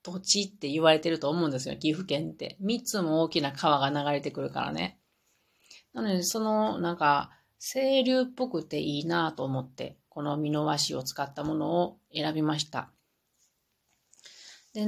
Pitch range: 150-225 Hz